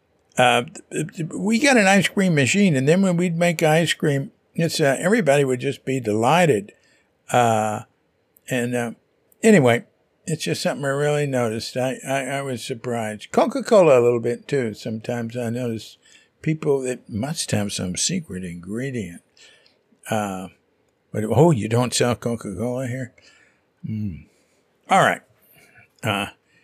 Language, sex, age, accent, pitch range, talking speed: English, male, 60-79, American, 110-145 Hz, 140 wpm